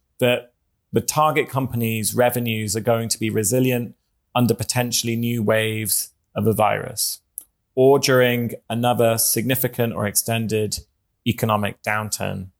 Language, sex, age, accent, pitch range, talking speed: English, male, 30-49, British, 110-125 Hz, 120 wpm